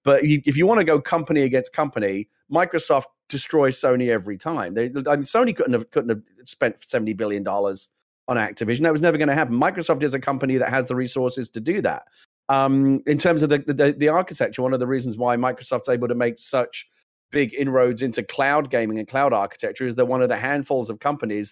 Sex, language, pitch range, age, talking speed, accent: male, English, 115-140 Hz, 30-49, 220 wpm, British